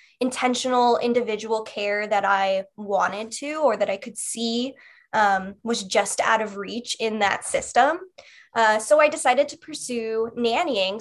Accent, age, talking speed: American, 10-29, 155 wpm